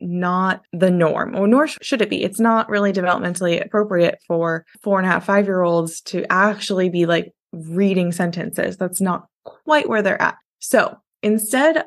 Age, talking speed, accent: 20-39, 175 wpm, American